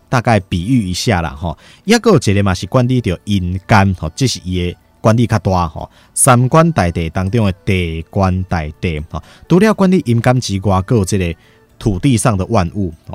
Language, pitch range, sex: Chinese, 85-115 Hz, male